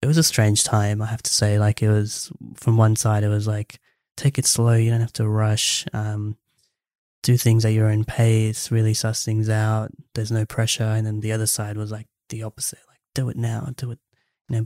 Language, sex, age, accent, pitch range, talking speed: English, male, 10-29, Australian, 105-115 Hz, 235 wpm